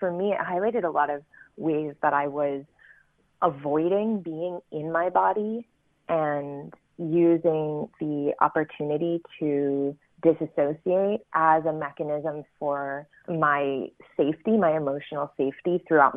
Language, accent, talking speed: English, American, 120 wpm